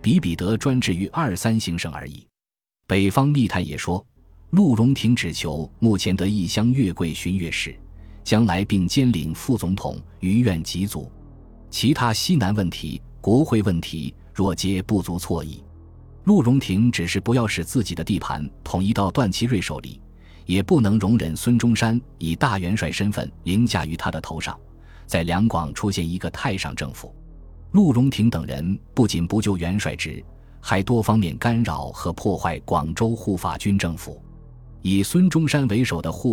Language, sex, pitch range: Chinese, male, 85-115 Hz